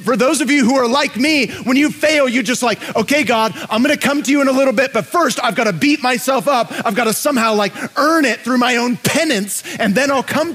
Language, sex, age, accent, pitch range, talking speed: English, male, 30-49, American, 185-270 Hz, 260 wpm